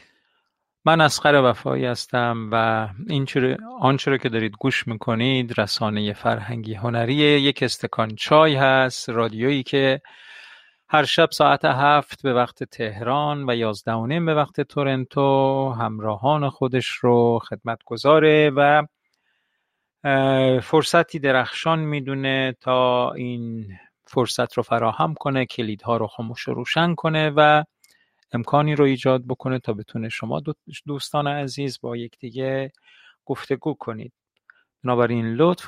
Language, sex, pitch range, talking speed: Persian, male, 115-145 Hz, 115 wpm